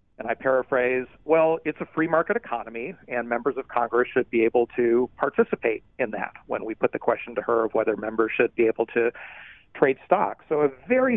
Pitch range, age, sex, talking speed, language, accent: 120-150 Hz, 40-59, male, 210 wpm, English, American